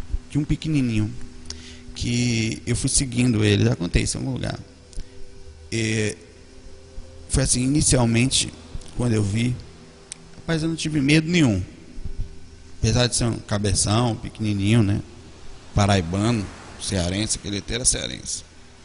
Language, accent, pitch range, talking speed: Portuguese, Brazilian, 100-130 Hz, 120 wpm